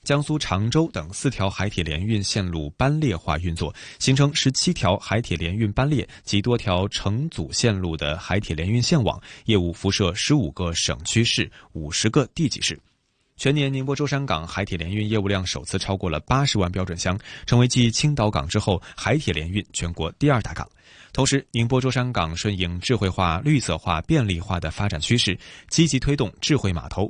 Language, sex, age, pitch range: Chinese, male, 20-39, 95-130 Hz